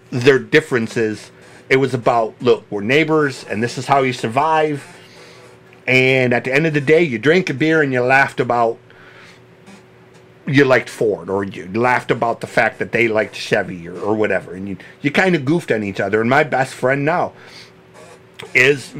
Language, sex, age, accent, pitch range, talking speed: English, male, 50-69, American, 115-150 Hz, 190 wpm